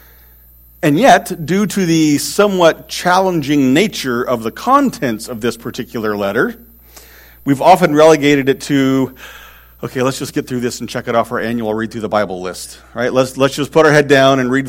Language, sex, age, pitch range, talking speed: English, male, 40-59, 110-150 Hz, 190 wpm